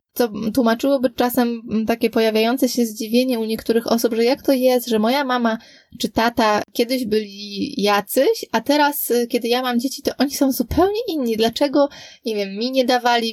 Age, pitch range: 20-39, 215-255 Hz